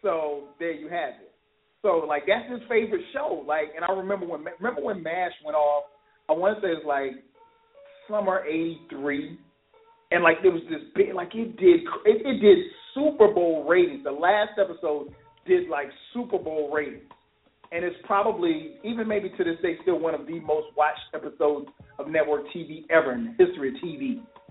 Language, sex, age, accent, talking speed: English, male, 40-59, American, 190 wpm